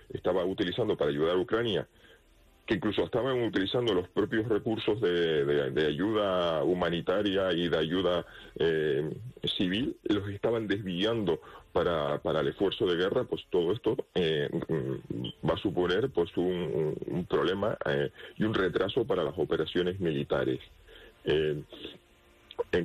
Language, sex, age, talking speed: Spanish, male, 40-59, 140 wpm